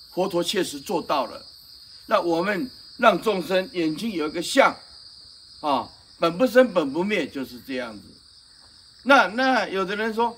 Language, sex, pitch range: Chinese, male, 165-250 Hz